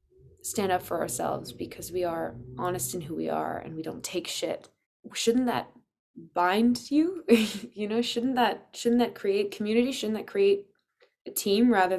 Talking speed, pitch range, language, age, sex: 175 wpm, 170-200 Hz, English, 20-39, female